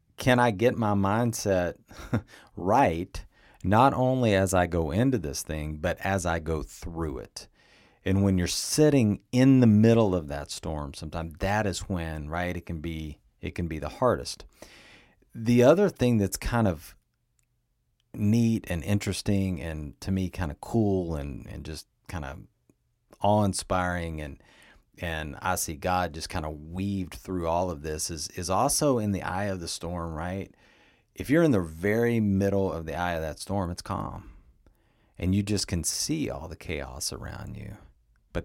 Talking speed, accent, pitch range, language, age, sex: 175 wpm, American, 80-105 Hz, English, 40-59, male